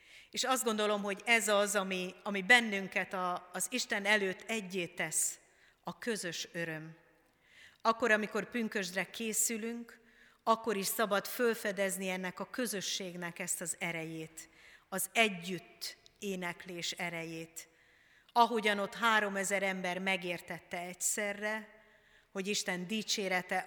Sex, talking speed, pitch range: female, 115 wpm, 180-210 Hz